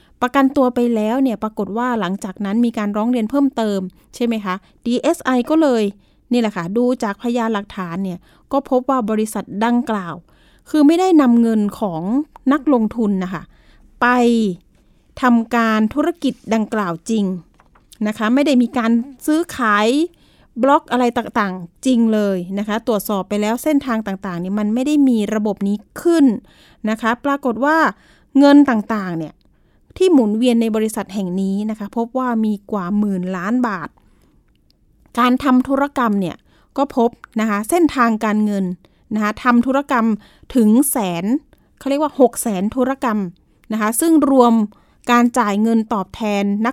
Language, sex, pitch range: Thai, female, 210-255 Hz